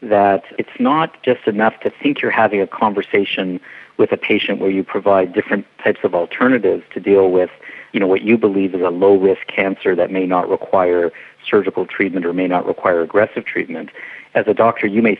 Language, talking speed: English, 195 wpm